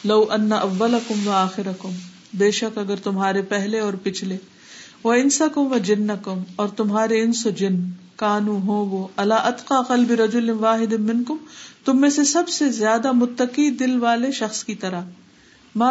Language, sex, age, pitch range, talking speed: Urdu, female, 50-69, 195-230 Hz, 100 wpm